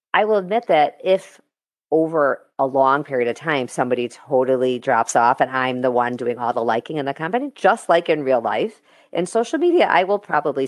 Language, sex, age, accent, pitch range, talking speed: English, female, 40-59, American, 130-185 Hz, 210 wpm